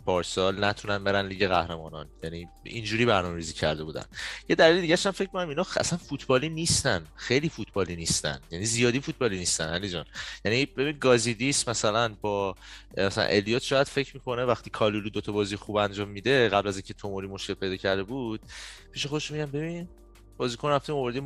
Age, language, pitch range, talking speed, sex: 30-49, Persian, 100-135 Hz, 175 wpm, male